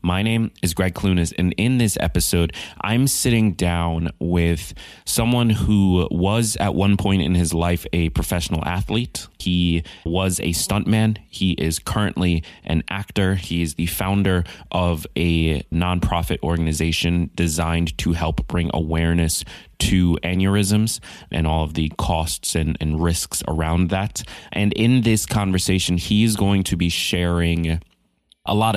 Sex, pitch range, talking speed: male, 85-100 Hz, 150 wpm